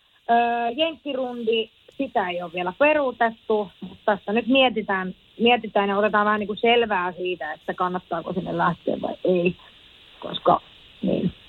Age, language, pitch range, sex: 30-49, Finnish, 180-220 Hz, female